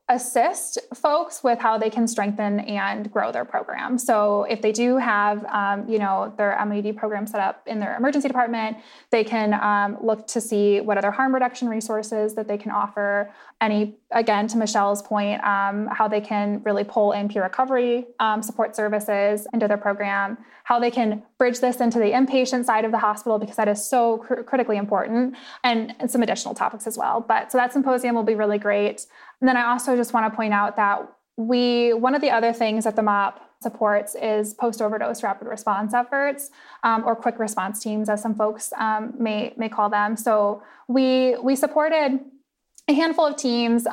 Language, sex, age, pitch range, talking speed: English, female, 10-29, 210-245 Hz, 195 wpm